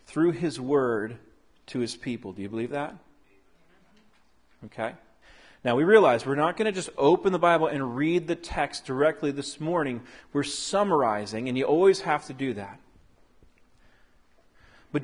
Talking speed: 155 wpm